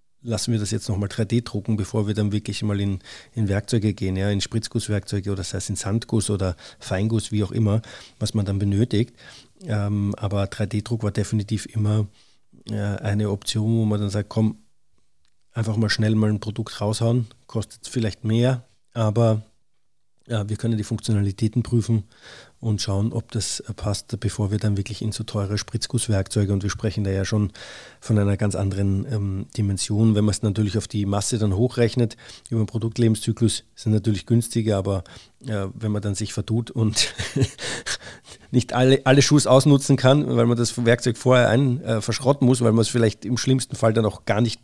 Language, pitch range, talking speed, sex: German, 105-115 Hz, 185 wpm, male